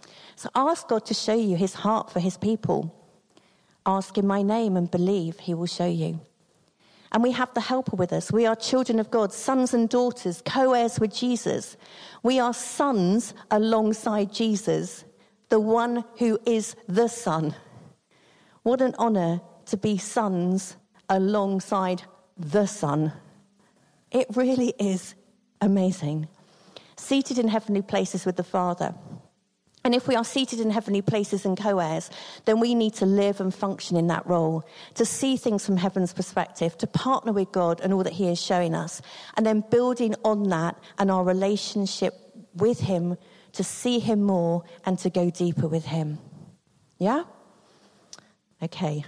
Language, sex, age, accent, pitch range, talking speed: English, female, 50-69, British, 180-225 Hz, 160 wpm